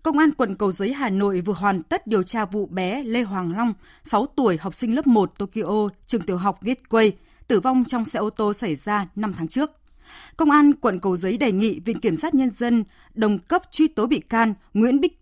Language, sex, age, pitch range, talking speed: Vietnamese, female, 20-39, 195-260 Hz, 235 wpm